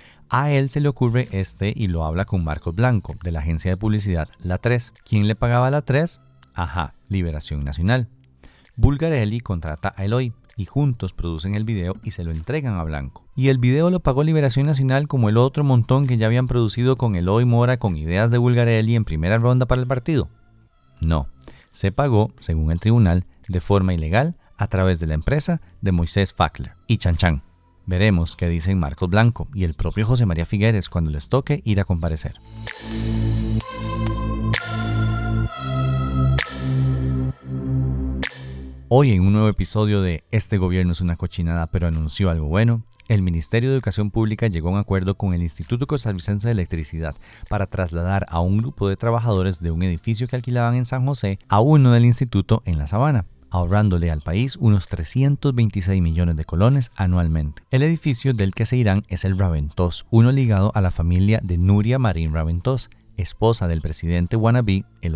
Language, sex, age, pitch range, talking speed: Spanish, male, 40-59, 85-115 Hz, 180 wpm